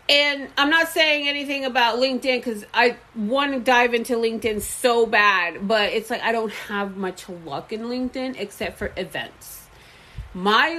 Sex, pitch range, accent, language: female, 215-280 Hz, American, English